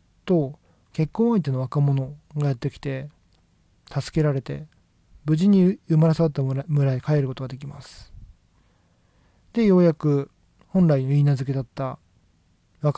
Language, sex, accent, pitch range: Japanese, male, native, 110-155 Hz